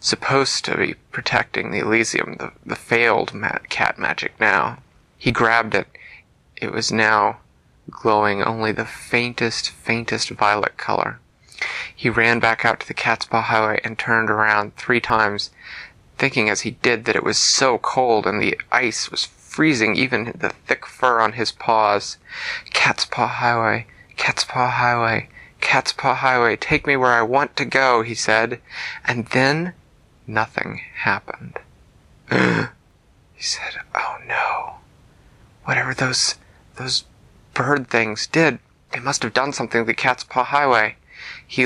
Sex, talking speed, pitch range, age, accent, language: male, 150 wpm, 110-125 Hz, 30-49, American, English